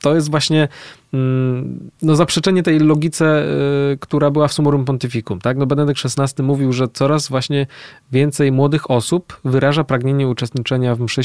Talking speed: 150 wpm